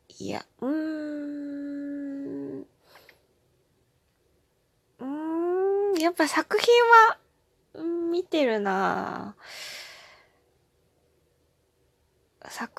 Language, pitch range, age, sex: Japanese, 185-285 Hz, 20-39, female